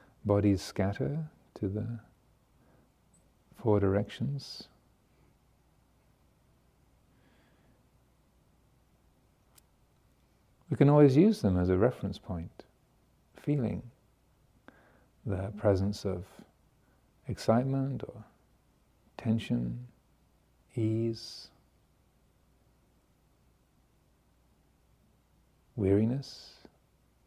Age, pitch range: 50-69, 100-125 Hz